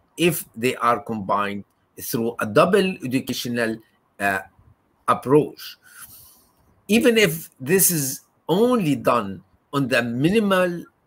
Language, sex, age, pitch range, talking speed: Turkish, male, 50-69, 105-155 Hz, 105 wpm